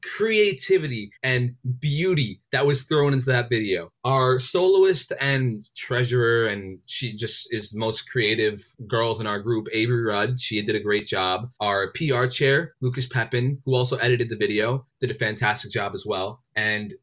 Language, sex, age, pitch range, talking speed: English, male, 20-39, 110-135 Hz, 170 wpm